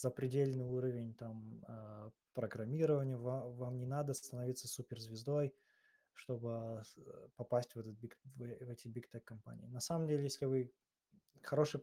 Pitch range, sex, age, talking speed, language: 120-140 Hz, male, 20-39, 130 wpm, Russian